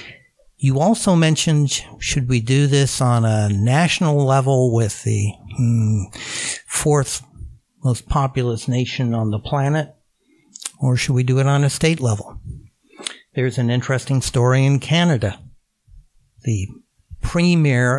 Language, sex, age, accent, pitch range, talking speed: English, male, 60-79, American, 115-145 Hz, 125 wpm